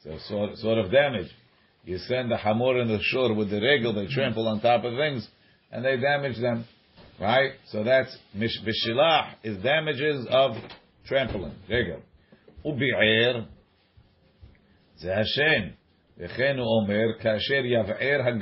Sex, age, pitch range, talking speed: male, 50-69, 100-120 Hz, 110 wpm